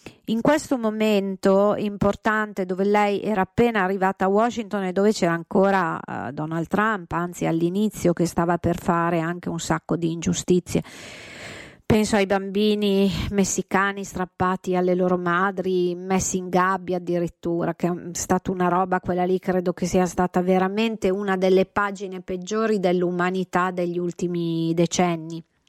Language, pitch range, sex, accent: Italian, 175-205 Hz, female, native